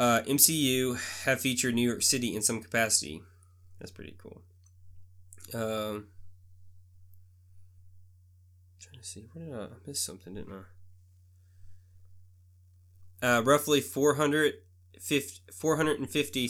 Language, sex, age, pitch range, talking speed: English, male, 20-39, 90-130 Hz, 110 wpm